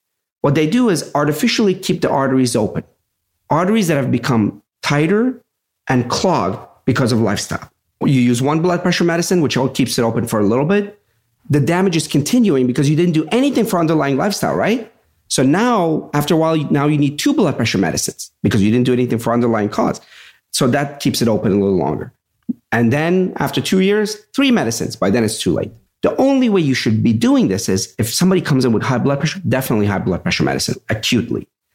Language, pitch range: English, 120-185 Hz